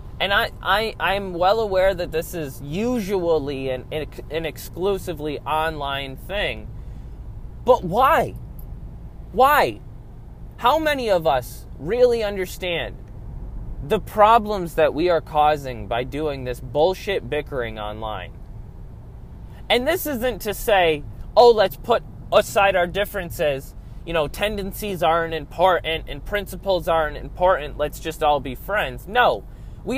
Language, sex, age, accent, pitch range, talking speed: English, male, 20-39, American, 145-205 Hz, 125 wpm